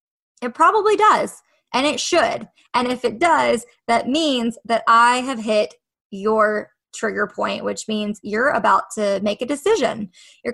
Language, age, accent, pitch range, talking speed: English, 20-39, American, 220-290 Hz, 160 wpm